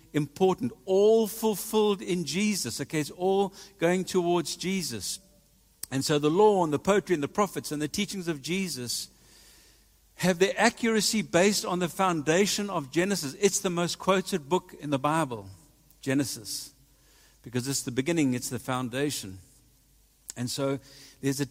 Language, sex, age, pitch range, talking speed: English, male, 60-79, 135-180 Hz, 155 wpm